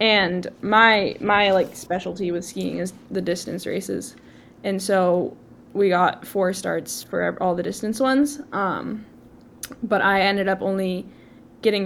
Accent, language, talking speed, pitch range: American, English, 145 wpm, 180-210 Hz